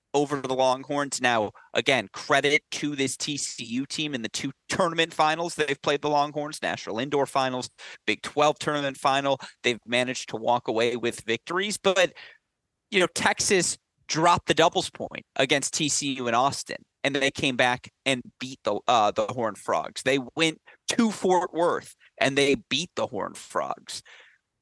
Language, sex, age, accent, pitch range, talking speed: English, male, 30-49, American, 135-180 Hz, 165 wpm